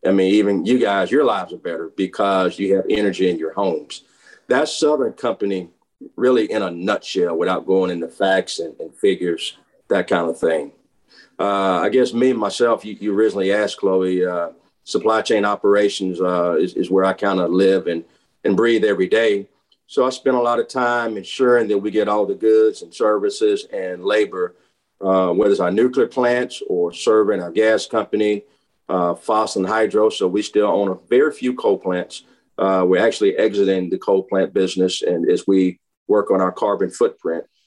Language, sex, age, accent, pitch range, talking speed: English, male, 50-69, American, 95-120 Hz, 190 wpm